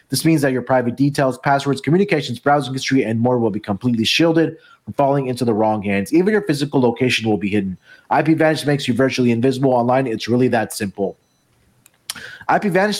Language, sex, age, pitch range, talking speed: English, male, 30-49, 115-165 Hz, 185 wpm